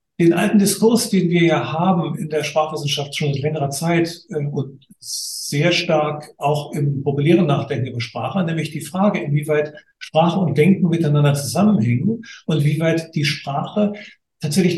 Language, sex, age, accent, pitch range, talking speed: German, male, 50-69, German, 145-175 Hz, 150 wpm